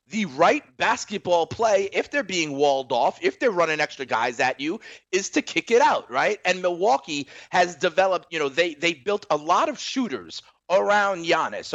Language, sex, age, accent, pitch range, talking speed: English, male, 30-49, American, 150-230 Hz, 190 wpm